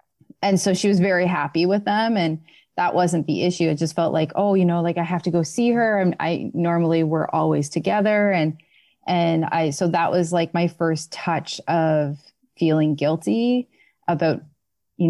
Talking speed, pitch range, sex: 190 wpm, 165-205 Hz, female